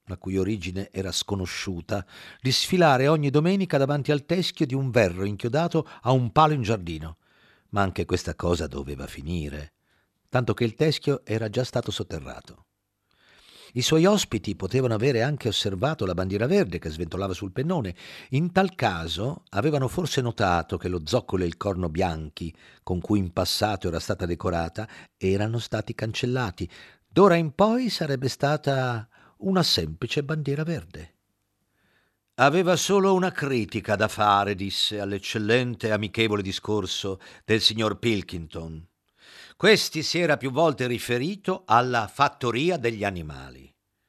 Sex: male